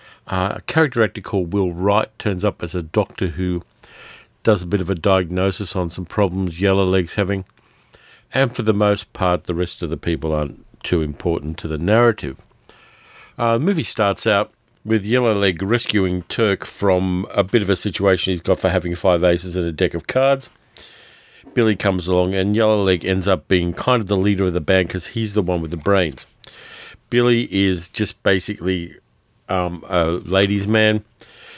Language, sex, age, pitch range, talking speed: English, male, 50-69, 90-110 Hz, 180 wpm